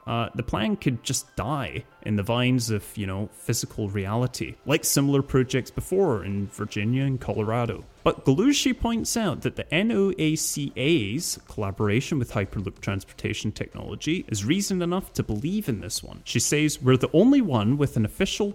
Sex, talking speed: male, 165 wpm